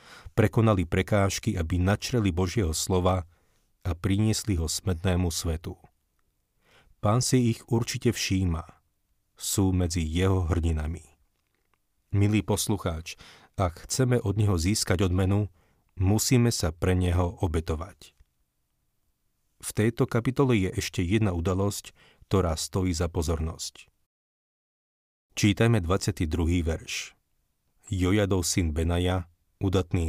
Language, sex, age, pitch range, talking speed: Slovak, male, 40-59, 85-105 Hz, 100 wpm